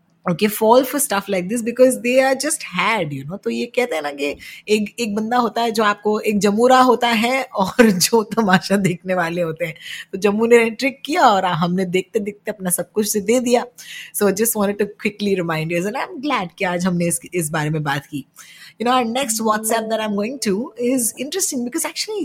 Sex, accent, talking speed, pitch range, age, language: female, native, 95 wpm, 180-245 Hz, 20-39, Hindi